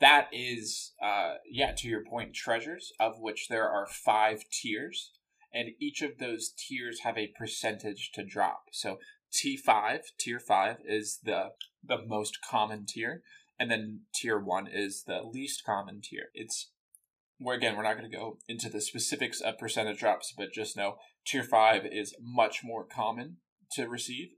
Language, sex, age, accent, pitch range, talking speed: English, male, 20-39, American, 105-125 Hz, 165 wpm